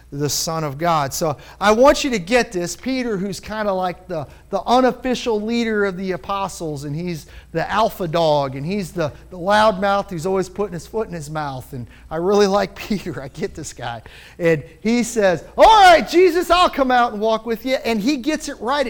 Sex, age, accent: male, 40-59, American